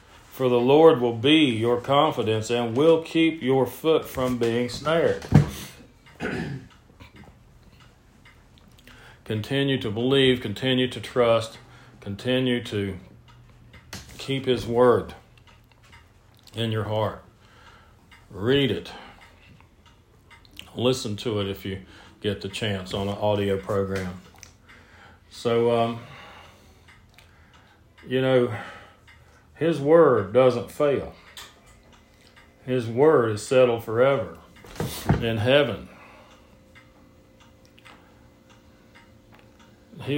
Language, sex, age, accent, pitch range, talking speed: English, male, 40-59, American, 100-140 Hz, 90 wpm